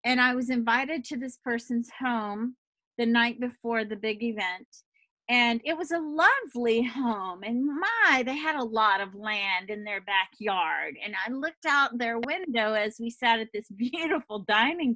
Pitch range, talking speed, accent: 215-270 Hz, 175 wpm, American